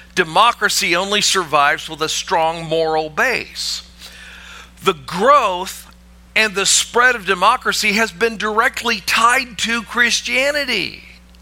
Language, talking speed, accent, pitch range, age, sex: English, 110 wpm, American, 175-250 Hz, 50-69, male